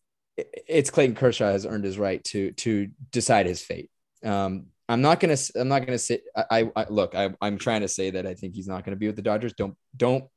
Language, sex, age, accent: English, male, 20-39, American